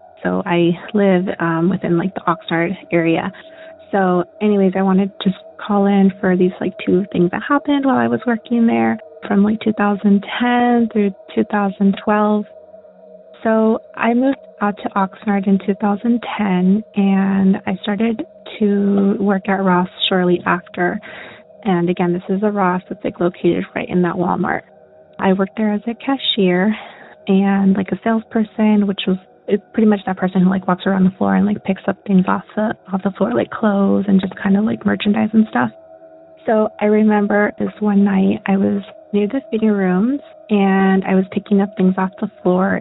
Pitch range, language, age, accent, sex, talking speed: 185-215 Hz, English, 20-39, American, female, 175 wpm